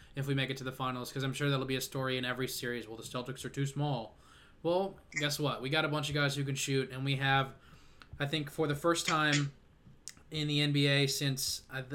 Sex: male